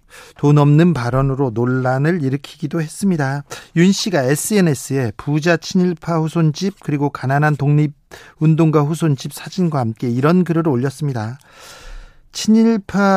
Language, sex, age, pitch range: Korean, male, 40-59, 140-170 Hz